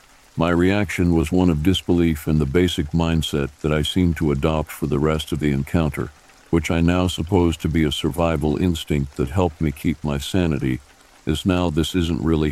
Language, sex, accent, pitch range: English, male, American, 75-90 Hz